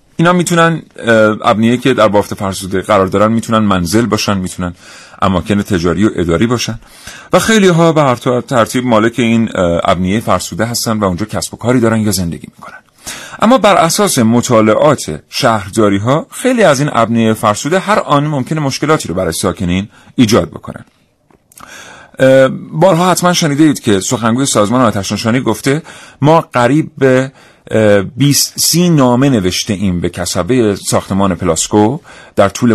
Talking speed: 150 wpm